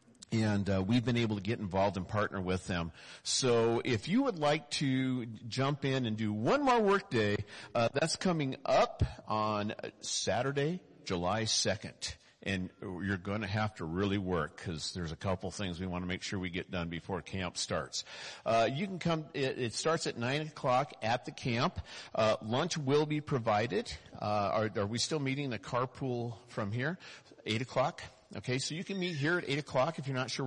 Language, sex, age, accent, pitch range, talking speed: English, male, 50-69, American, 100-135 Hz, 200 wpm